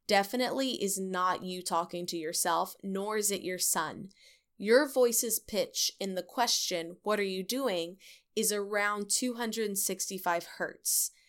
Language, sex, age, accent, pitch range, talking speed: English, female, 20-39, American, 180-210 Hz, 140 wpm